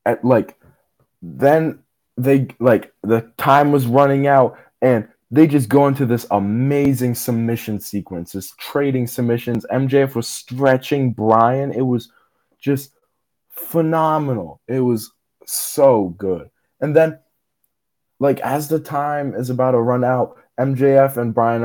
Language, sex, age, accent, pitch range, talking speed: English, male, 20-39, American, 105-135 Hz, 135 wpm